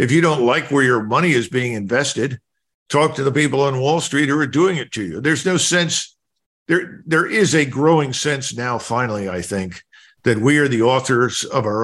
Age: 50-69